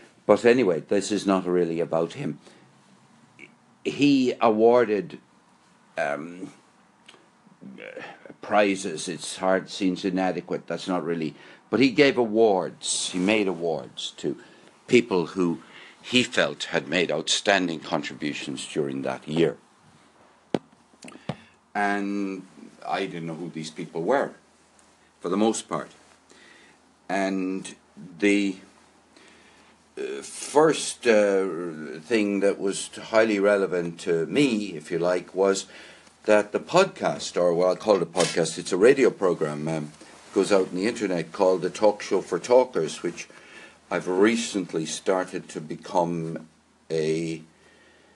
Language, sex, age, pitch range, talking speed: English, male, 60-79, 85-105 Hz, 125 wpm